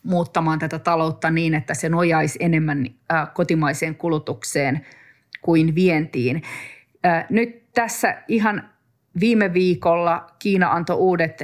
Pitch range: 160-185 Hz